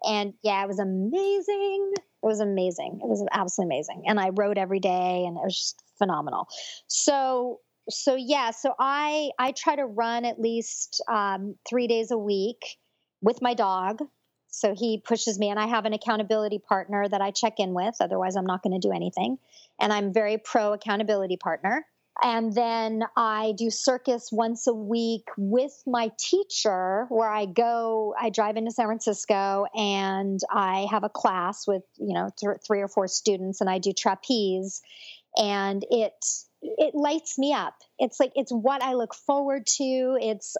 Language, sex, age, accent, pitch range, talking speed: English, male, 40-59, American, 200-235 Hz, 175 wpm